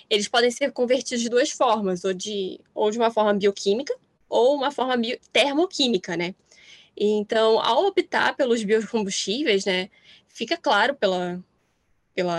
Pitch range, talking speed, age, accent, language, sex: 200-270 Hz, 145 wpm, 10-29, Brazilian, Portuguese, female